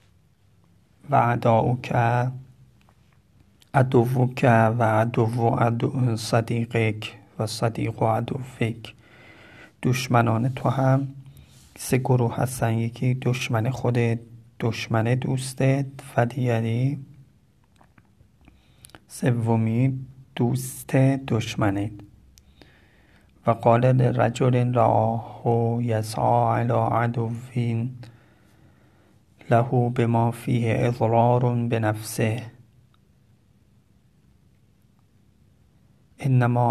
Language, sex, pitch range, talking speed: Persian, male, 110-125 Hz, 65 wpm